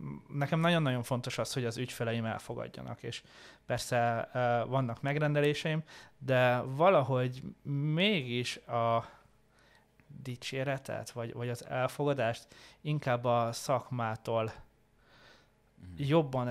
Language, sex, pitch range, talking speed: Hungarian, male, 120-145 Hz, 95 wpm